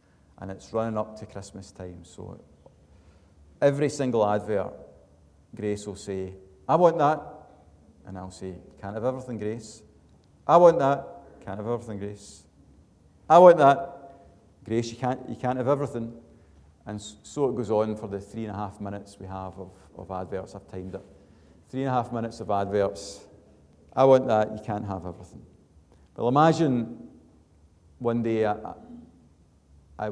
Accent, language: British, English